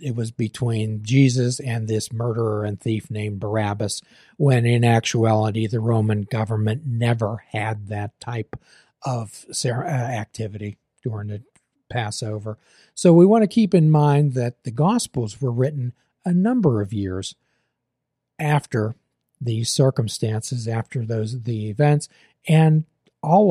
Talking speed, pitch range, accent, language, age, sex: 130 wpm, 110-140 Hz, American, English, 40-59, male